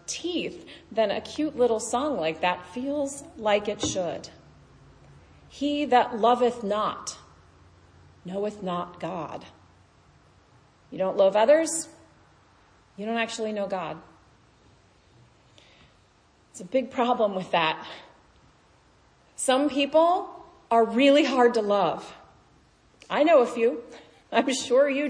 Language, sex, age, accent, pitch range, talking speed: English, female, 40-59, American, 210-280 Hz, 115 wpm